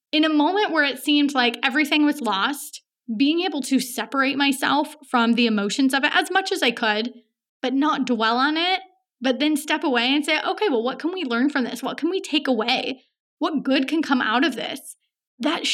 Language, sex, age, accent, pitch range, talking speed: English, female, 20-39, American, 245-300 Hz, 215 wpm